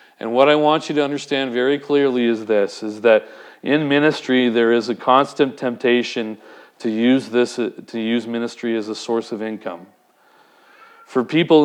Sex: male